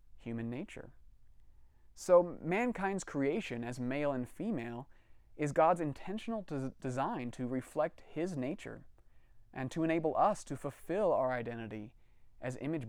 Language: English